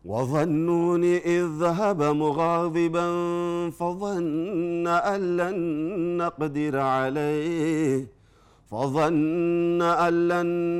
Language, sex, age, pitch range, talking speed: Amharic, male, 50-69, 135-170 Hz, 55 wpm